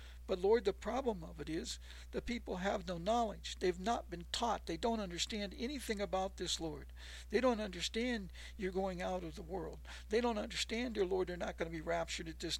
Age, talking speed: 60-79, 215 wpm